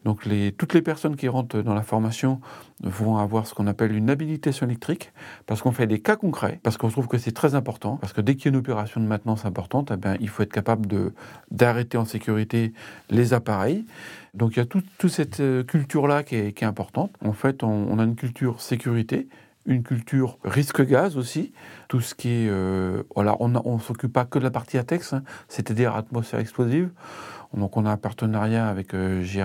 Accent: French